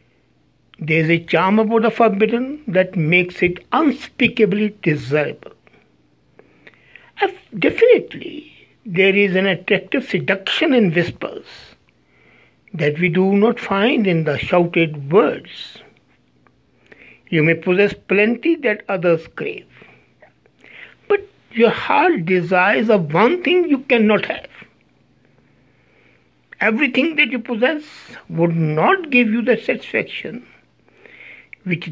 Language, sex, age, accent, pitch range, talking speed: English, male, 60-79, Indian, 170-225 Hz, 105 wpm